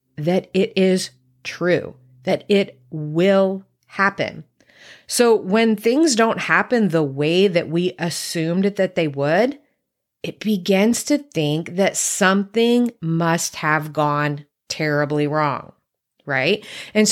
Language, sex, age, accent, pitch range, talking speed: English, female, 30-49, American, 155-225 Hz, 120 wpm